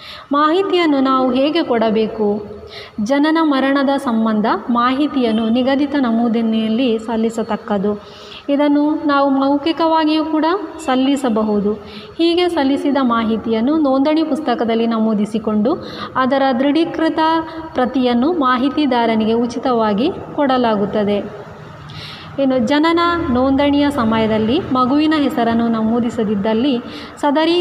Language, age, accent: Kannada, 20-39, native